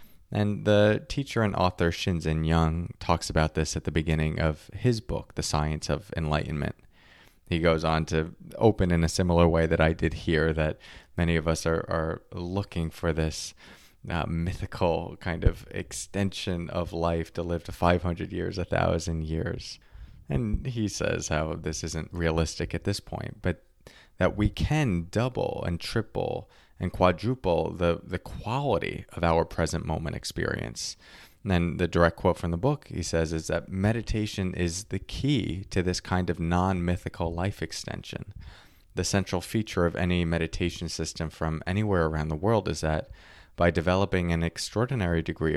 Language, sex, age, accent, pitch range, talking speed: English, male, 20-39, American, 80-100 Hz, 165 wpm